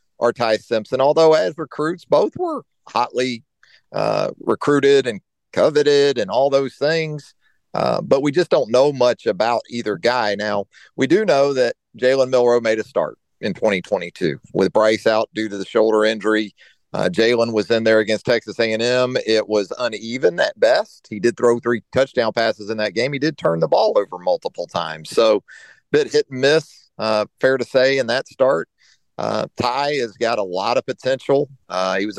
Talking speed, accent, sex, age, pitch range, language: 190 wpm, American, male, 40-59, 110-155 Hz, English